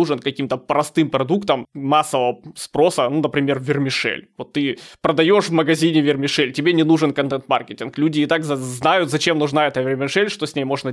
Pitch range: 135-165 Hz